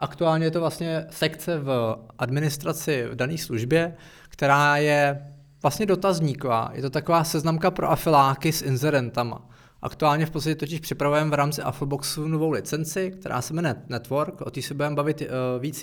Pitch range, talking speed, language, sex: 135-155 Hz, 160 wpm, Czech, male